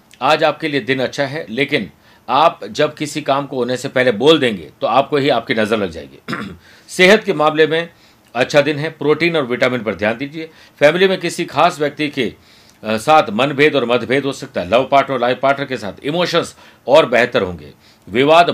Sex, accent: male, native